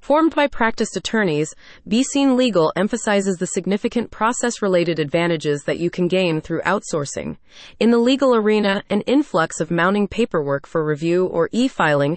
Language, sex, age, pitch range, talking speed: English, female, 30-49, 170-225 Hz, 155 wpm